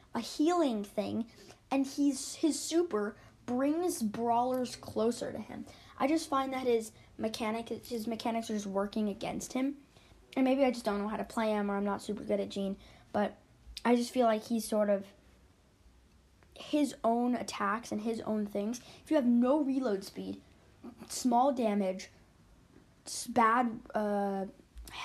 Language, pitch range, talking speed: English, 210-265 Hz, 160 wpm